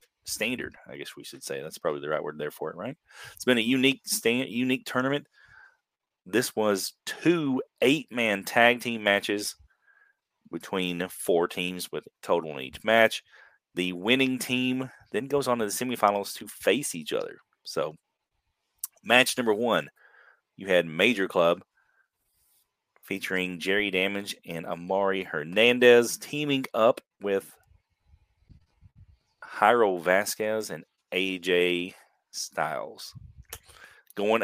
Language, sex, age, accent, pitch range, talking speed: English, male, 30-49, American, 95-130 Hz, 130 wpm